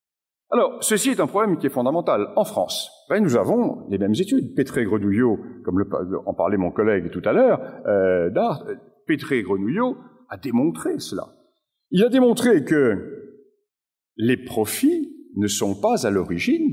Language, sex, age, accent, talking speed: French, male, 50-69, French, 160 wpm